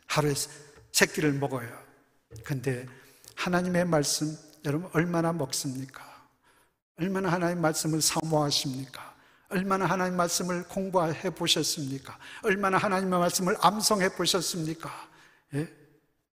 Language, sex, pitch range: Korean, male, 145-200 Hz